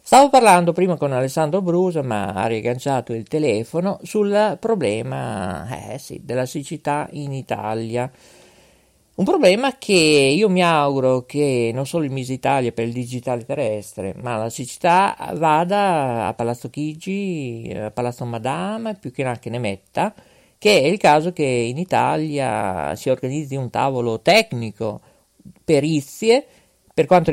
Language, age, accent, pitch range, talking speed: Italian, 50-69, native, 120-175 Hz, 145 wpm